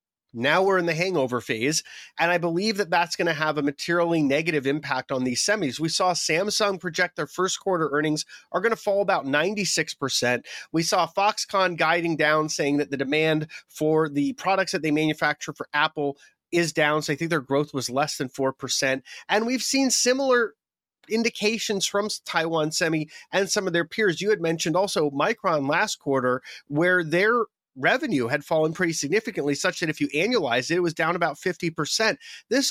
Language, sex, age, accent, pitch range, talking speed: English, male, 30-49, American, 155-200 Hz, 190 wpm